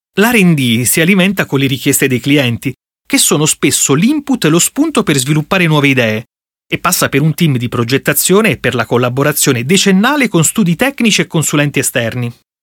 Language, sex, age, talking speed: Italian, male, 30-49, 175 wpm